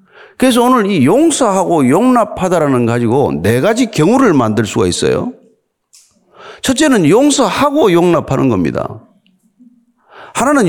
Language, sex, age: Korean, male, 40-59